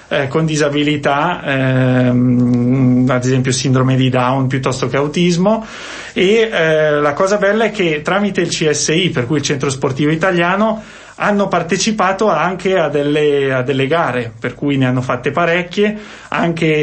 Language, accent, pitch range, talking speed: Italian, native, 145-180 Hz, 145 wpm